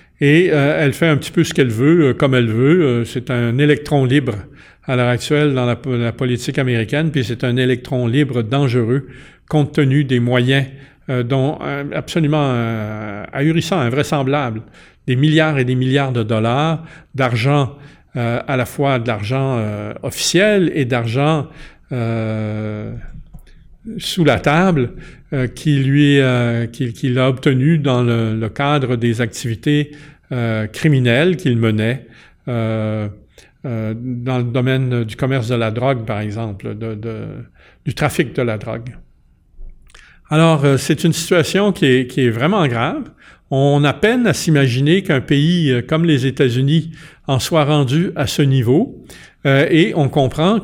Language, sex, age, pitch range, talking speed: French, male, 50-69, 120-150 Hz, 160 wpm